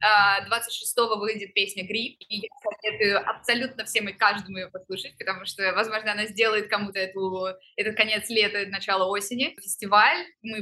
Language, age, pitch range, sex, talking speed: Russian, 20-39, 205-250 Hz, female, 140 wpm